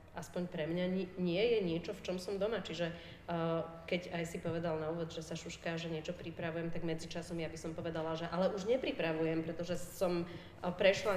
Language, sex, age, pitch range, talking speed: Slovak, female, 30-49, 165-190 Hz, 190 wpm